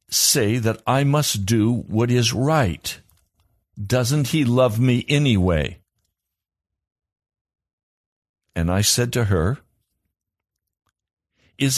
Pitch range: 100-145 Hz